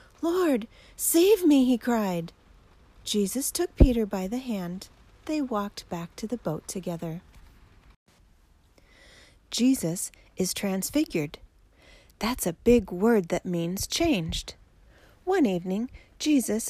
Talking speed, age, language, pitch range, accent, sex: 110 wpm, 40-59, English, 175-250 Hz, American, female